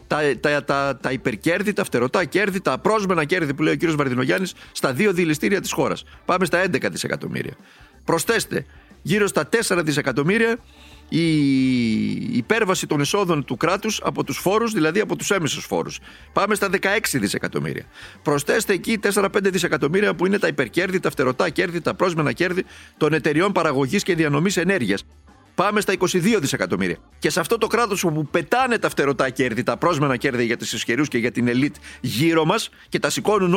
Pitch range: 150-205 Hz